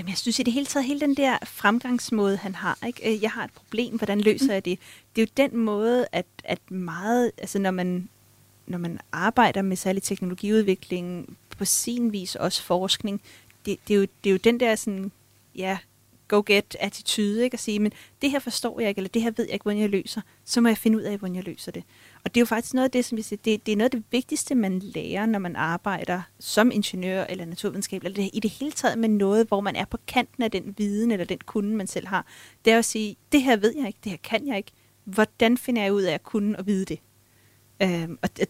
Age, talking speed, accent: 30-49, 250 wpm, native